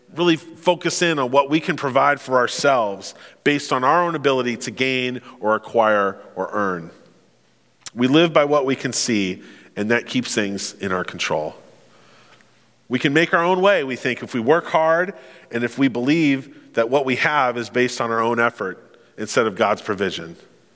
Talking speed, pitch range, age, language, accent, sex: 190 wpm, 120-190 Hz, 40-59, English, American, male